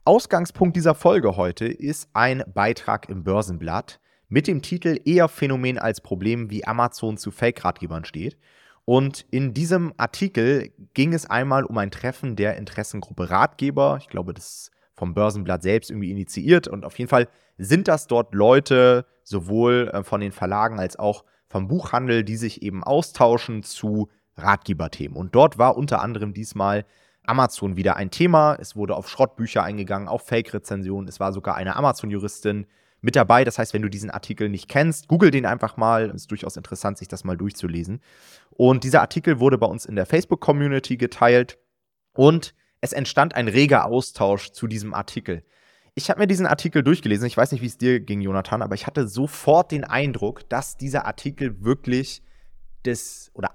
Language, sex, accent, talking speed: German, male, German, 175 wpm